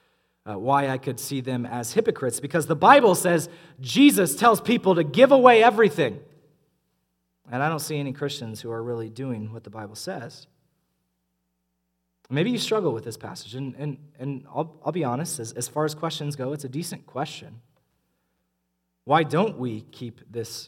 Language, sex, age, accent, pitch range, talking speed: English, male, 30-49, American, 115-180 Hz, 175 wpm